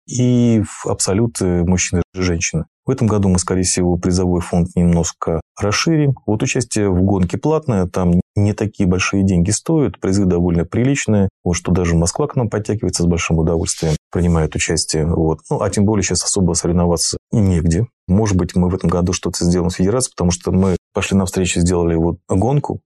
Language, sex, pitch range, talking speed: Russian, male, 90-105 Hz, 185 wpm